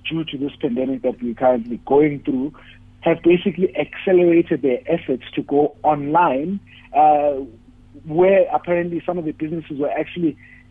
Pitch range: 130-165 Hz